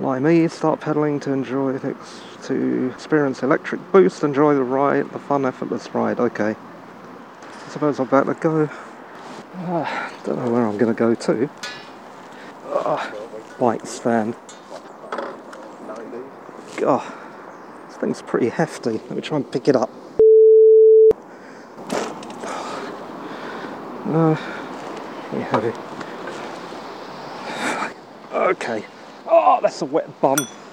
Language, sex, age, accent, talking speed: English, male, 50-69, British, 105 wpm